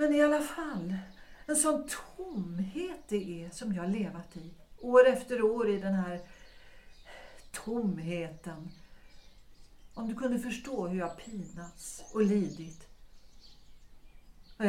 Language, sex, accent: Swedish, female, native